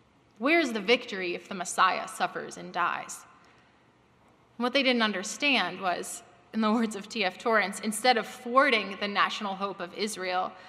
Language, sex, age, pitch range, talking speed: English, female, 20-39, 195-245 Hz, 165 wpm